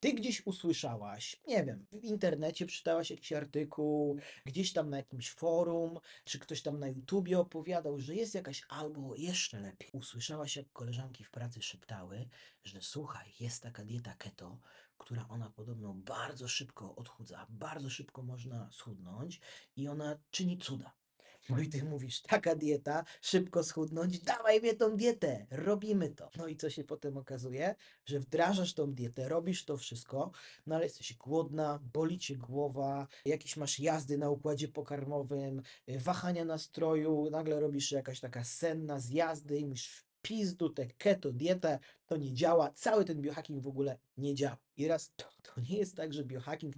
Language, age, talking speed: Polish, 30-49, 165 wpm